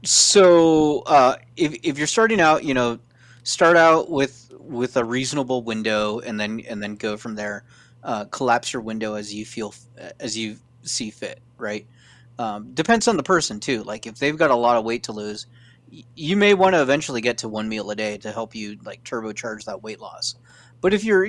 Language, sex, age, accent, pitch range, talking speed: English, male, 30-49, American, 115-130 Hz, 205 wpm